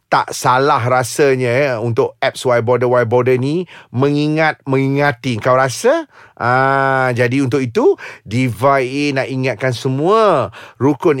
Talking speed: 120 wpm